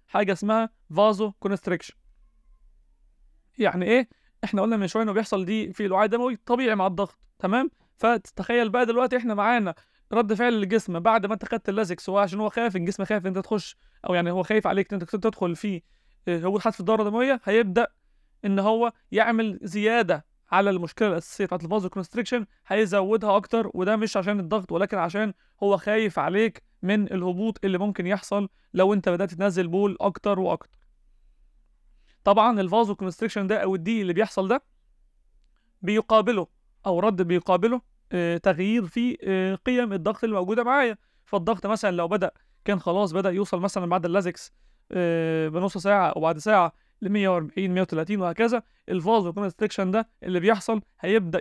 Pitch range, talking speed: 185-225 Hz, 160 wpm